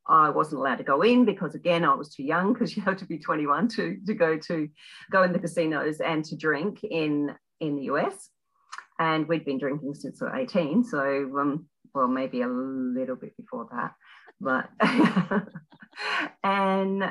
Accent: Australian